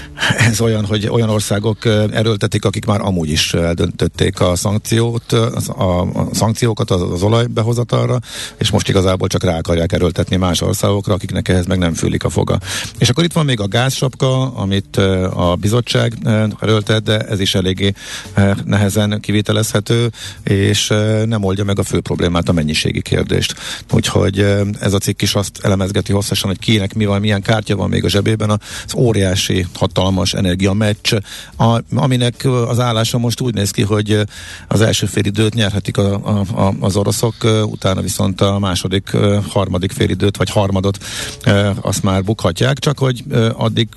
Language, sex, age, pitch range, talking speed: Hungarian, male, 50-69, 95-115 Hz, 160 wpm